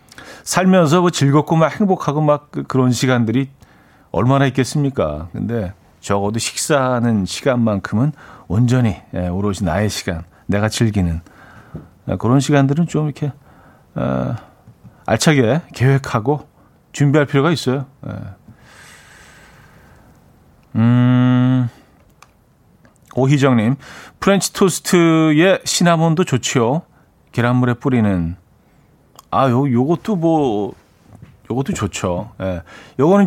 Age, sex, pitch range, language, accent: 40-59, male, 110-150 Hz, Korean, native